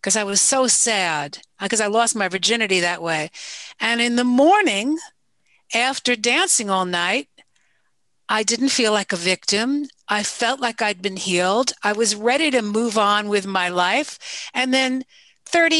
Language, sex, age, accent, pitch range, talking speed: English, female, 50-69, American, 205-260 Hz, 165 wpm